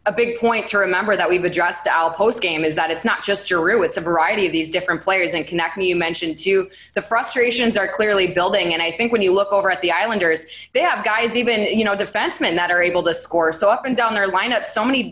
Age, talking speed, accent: 20-39, 260 wpm, American